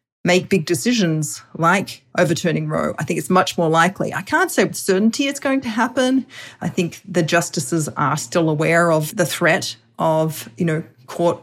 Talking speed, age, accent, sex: 185 wpm, 30-49, Australian, female